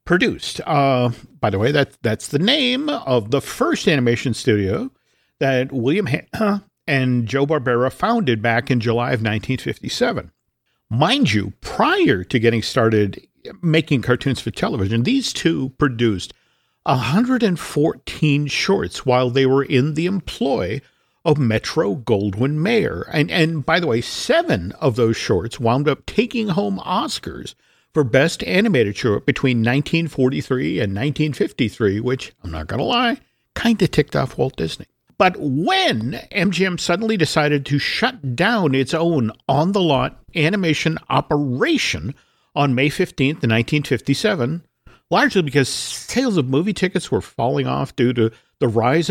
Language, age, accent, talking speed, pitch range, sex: English, 50-69, American, 140 wpm, 125-185 Hz, male